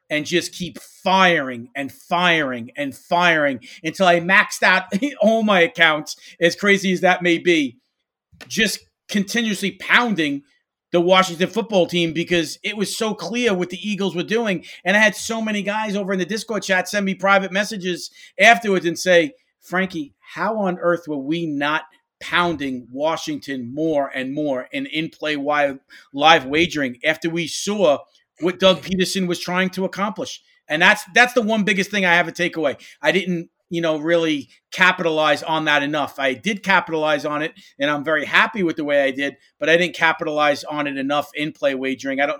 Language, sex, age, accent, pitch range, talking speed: English, male, 40-59, American, 155-195 Hz, 180 wpm